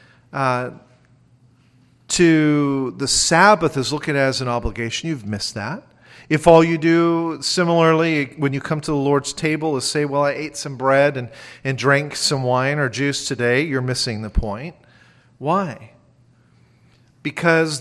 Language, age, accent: English, 40-59, American